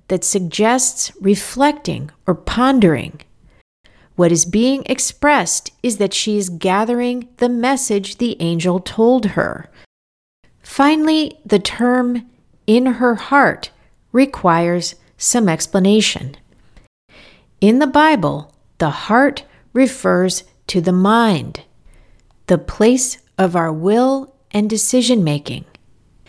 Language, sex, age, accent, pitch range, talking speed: English, female, 40-59, American, 170-245 Hz, 105 wpm